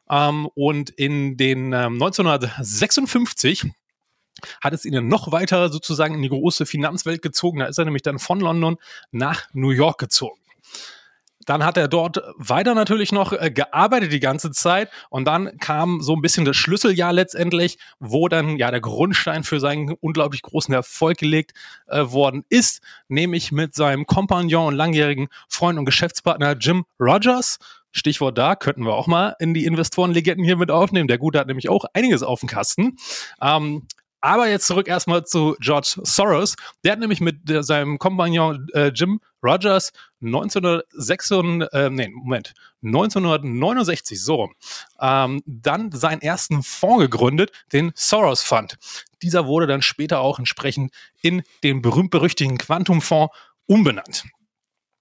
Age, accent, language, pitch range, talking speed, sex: 30-49, German, German, 140-180 Hz, 145 wpm, male